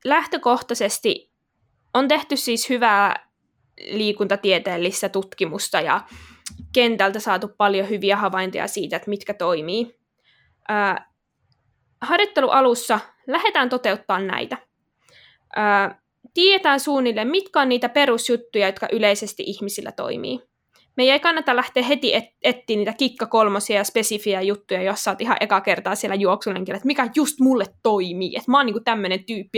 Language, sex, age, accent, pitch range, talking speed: Finnish, female, 20-39, native, 210-275 Hz, 130 wpm